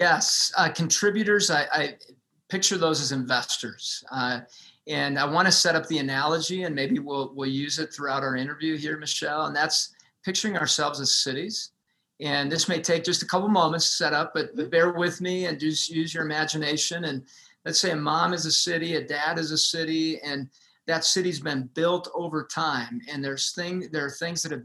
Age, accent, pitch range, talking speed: 40-59, American, 140-170 Hz, 205 wpm